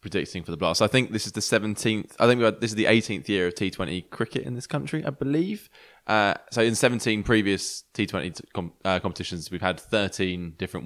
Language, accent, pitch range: English, British, 90-105 Hz